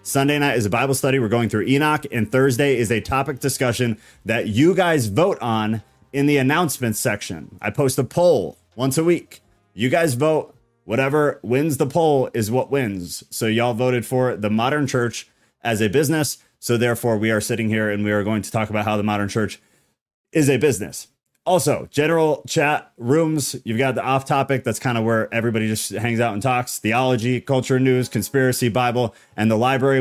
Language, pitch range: English, 110-140 Hz